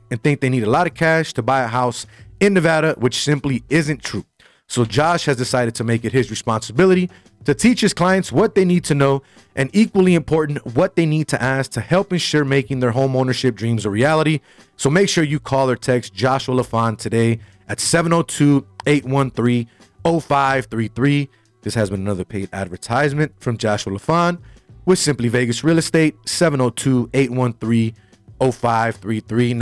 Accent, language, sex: American, English, male